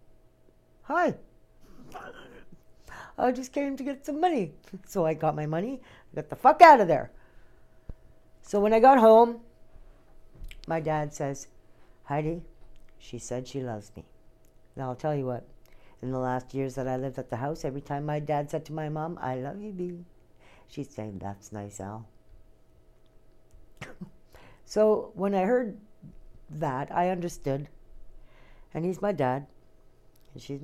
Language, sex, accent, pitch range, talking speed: English, female, American, 130-175 Hz, 150 wpm